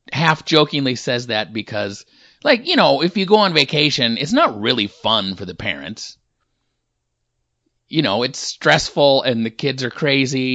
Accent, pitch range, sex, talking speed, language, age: American, 115-170 Hz, male, 165 wpm, English, 30-49